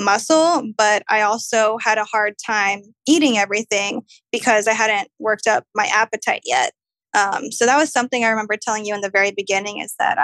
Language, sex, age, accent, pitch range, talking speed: English, female, 10-29, American, 210-235 Hz, 195 wpm